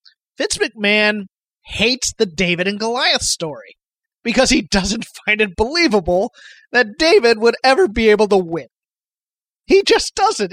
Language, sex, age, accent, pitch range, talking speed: English, male, 30-49, American, 180-235 Hz, 140 wpm